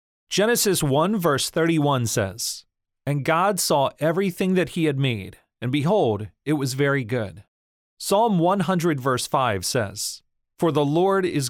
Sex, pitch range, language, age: male, 115-165 Hz, English, 40-59